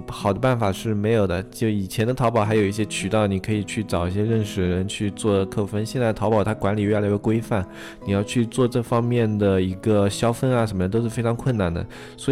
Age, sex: 20-39, male